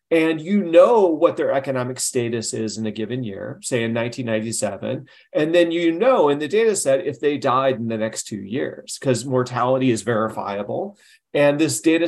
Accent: American